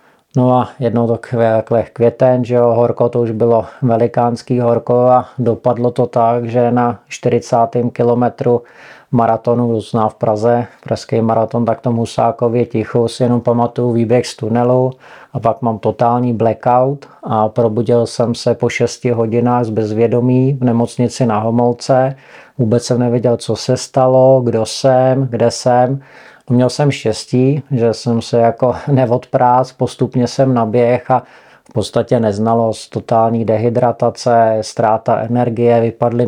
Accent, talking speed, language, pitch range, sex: native, 140 wpm, Czech, 115-125 Hz, male